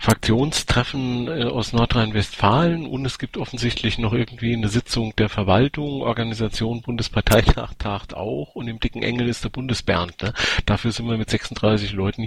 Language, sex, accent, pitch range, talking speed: German, male, German, 100-125 Hz, 145 wpm